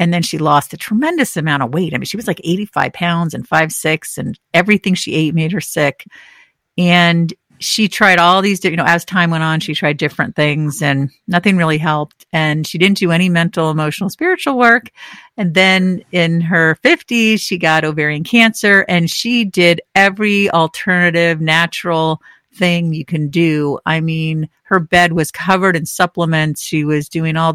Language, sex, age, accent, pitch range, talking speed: English, female, 50-69, American, 155-190 Hz, 185 wpm